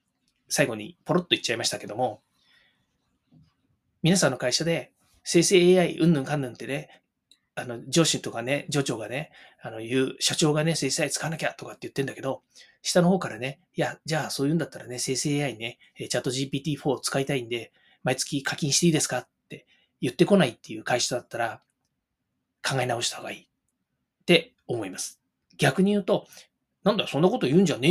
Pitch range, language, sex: 135-185 Hz, Japanese, male